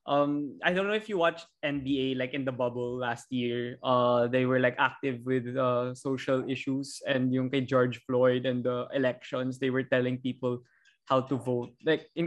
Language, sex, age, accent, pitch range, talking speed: Filipino, male, 20-39, native, 125-140 Hz, 195 wpm